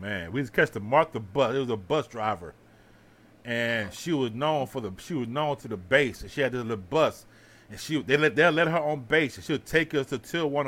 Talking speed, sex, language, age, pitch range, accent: 265 wpm, male, English, 30-49, 120-185 Hz, American